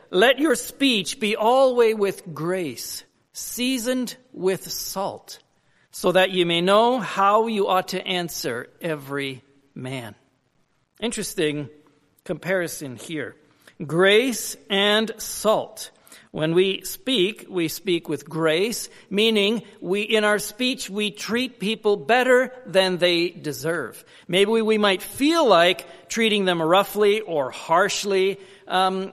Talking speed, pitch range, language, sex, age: 120 wpm, 165-215 Hz, English, male, 50-69